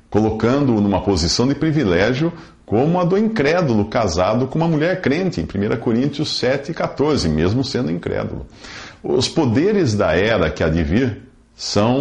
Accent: Brazilian